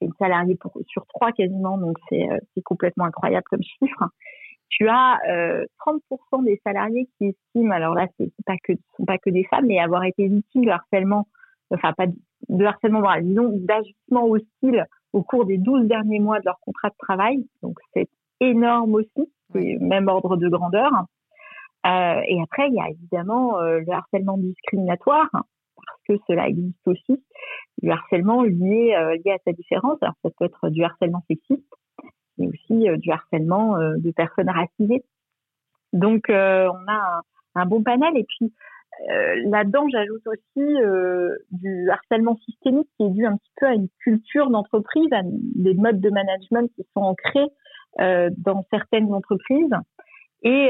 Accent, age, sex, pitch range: French, 50-69, female, 185-245 Hz